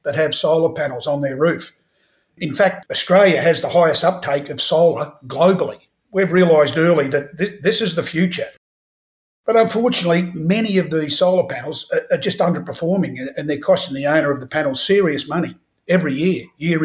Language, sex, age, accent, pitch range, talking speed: English, male, 50-69, Australian, 145-185 Hz, 170 wpm